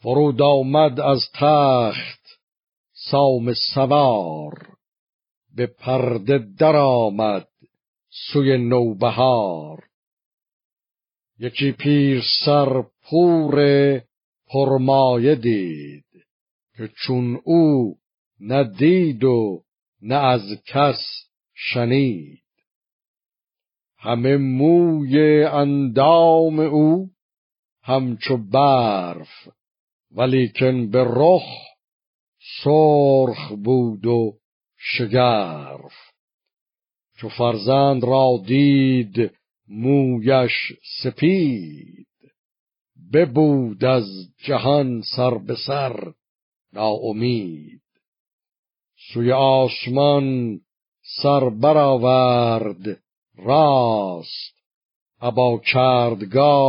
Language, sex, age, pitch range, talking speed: Persian, male, 50-69, 115-140 Hz, 60 wpm